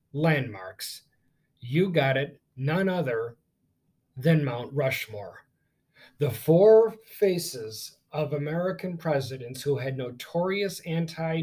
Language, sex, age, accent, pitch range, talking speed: English, male, 40-59, American, 135-160 Hz, 100 wpm